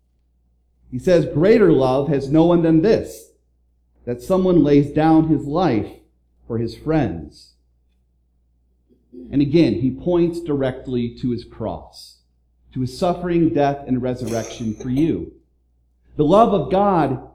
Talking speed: 130 wpm